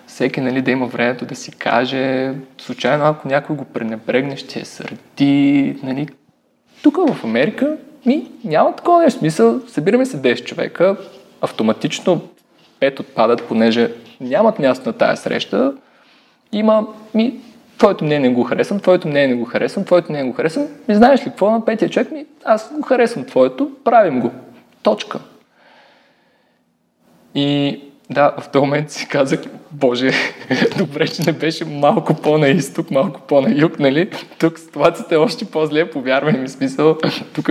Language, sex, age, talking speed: Bulgarian, male, 20-39, 155 wpm